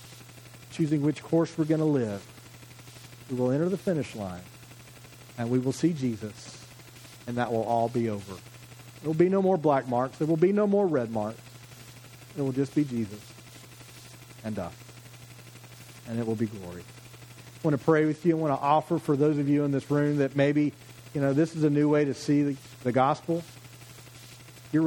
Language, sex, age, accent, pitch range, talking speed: English, male, 40-59, American, 120-160 Hz, 200 wpm